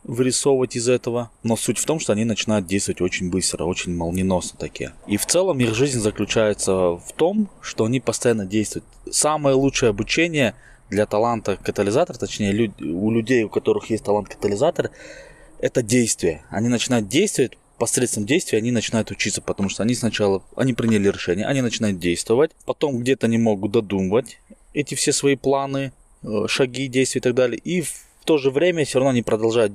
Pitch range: 105-135 Hz